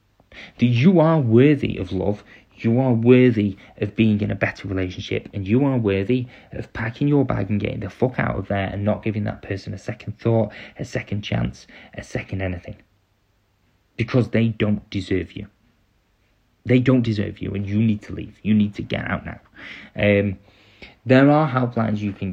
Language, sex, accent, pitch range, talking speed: English, male, British, 95-115 Hz, 190 wpm